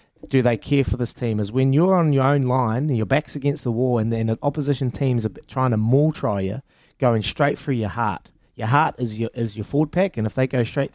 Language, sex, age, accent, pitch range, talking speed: English, male, 20-39, Australian, 115-140 Hz, 265 wpm